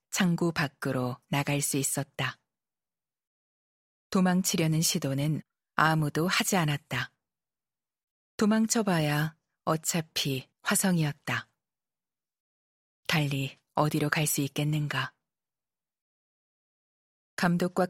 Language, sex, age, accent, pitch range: Korean, female, 40-59, native, 145-185 Hz